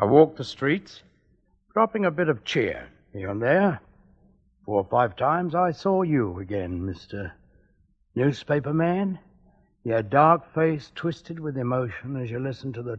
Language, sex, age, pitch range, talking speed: English, male, 60-79, 125-195 Hz, 155 wpm